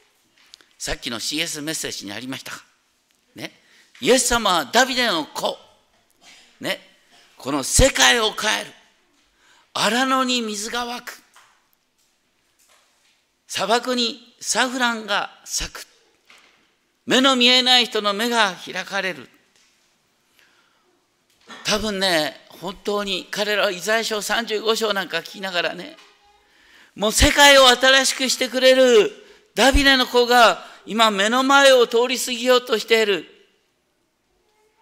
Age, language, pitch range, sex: 50-69, Japanese, 210-270 Hz, male